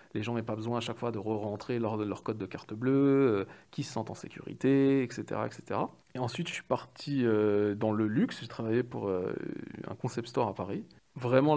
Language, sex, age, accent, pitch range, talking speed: French, male, 40-59, French, 110-135 Hz, 230 wpm